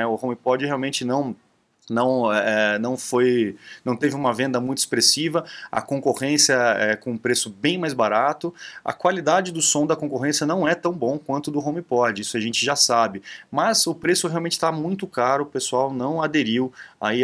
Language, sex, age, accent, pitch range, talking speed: Portuguese, male, 20-39, Brazilian, 120-155 Hz, 190 wpm